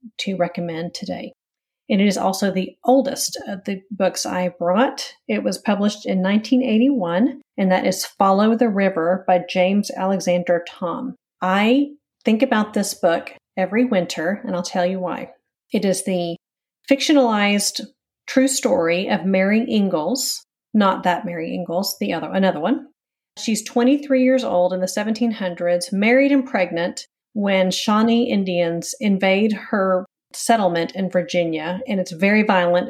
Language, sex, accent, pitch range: English, female, American, 180-220 Hz